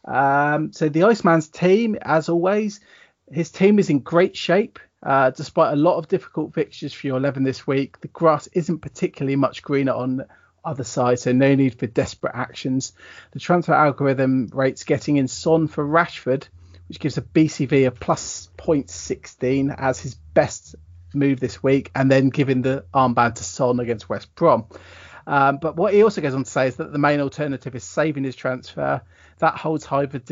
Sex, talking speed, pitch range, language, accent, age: male, 185 wpm, 130-155 Hz, English, British, 30-49